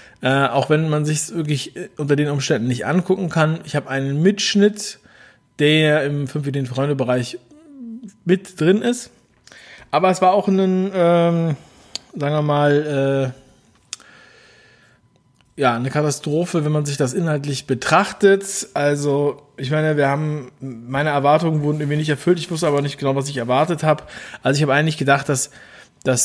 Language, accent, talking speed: German, German, 165 wpm